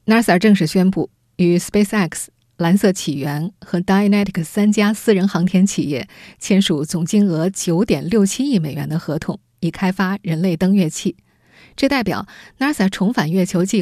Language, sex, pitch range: Chinese, female, 170-210 Hz